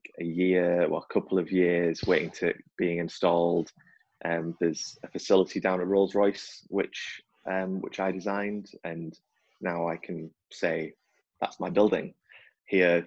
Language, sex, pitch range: English, male, 85-100 Hz